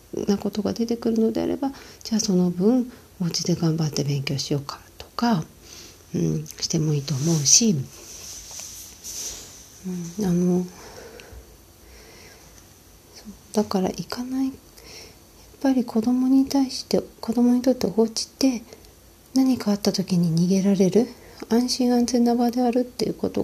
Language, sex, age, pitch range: Japanese, female, 40-59, 165-220 Hz